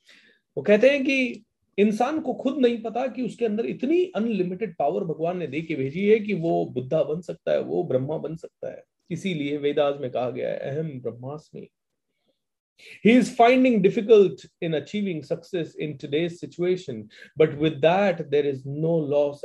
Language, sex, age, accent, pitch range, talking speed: Hindi, male, 30-49, native, 140-205 Hz, 175 wpm